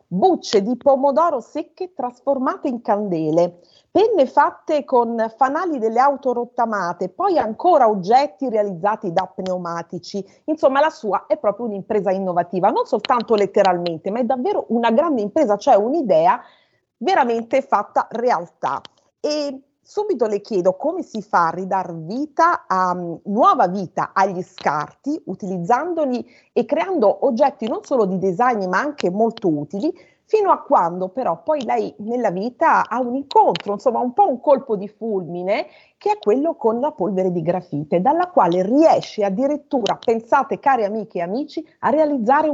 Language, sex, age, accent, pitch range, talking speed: Italian, female, 40-59, native, 195-295 Hz, 150 wpm